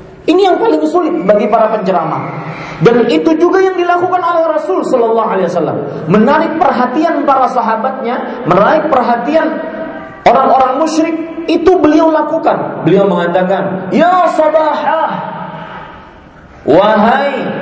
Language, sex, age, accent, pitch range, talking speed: Indonesian, male, 40-59, native, 200-310 Hz, 100 wpm